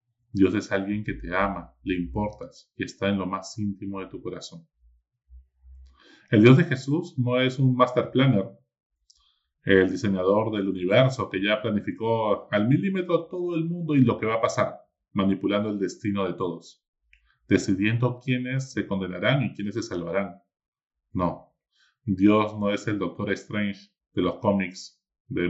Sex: male